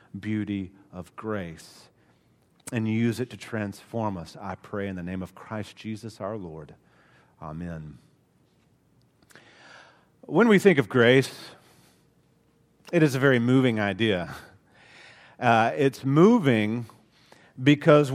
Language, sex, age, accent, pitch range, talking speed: English, male, 40-59, American, 130-180 Hz, 115 wpm